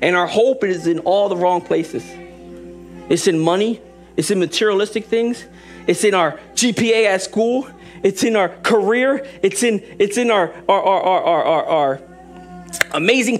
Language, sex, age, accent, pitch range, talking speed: English, male, 40-59, American, 175-255 Hz, 165 wpm